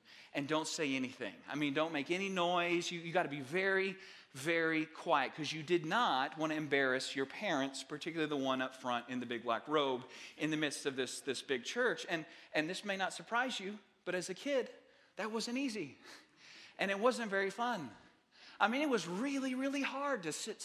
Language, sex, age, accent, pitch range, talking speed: English, male, 40-59, American, 155-215 Hz, 210 wpm